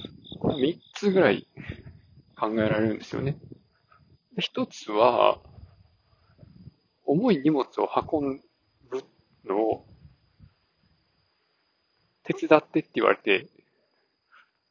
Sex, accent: male, native